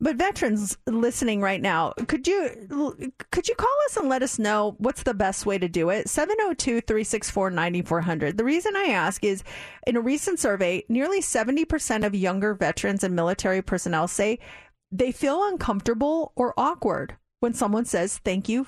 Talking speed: 170 wpm